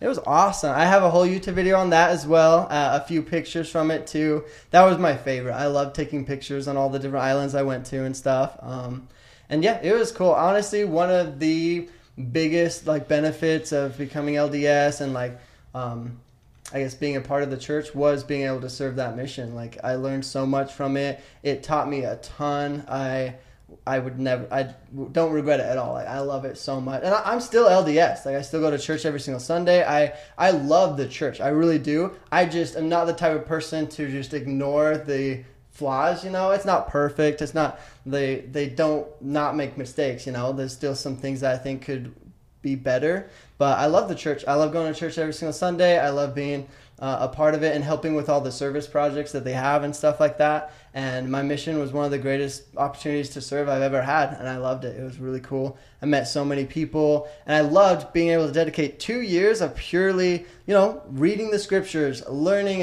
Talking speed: 225 wpm